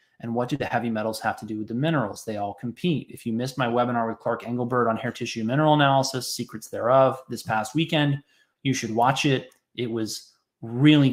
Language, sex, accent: English, male, American